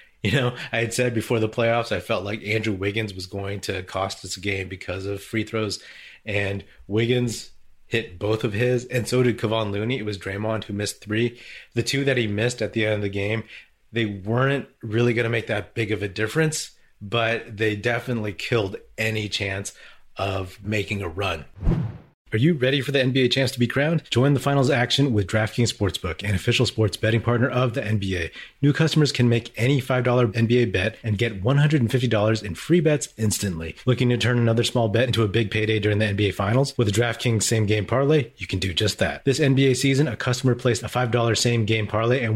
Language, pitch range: English, 105-125 Hz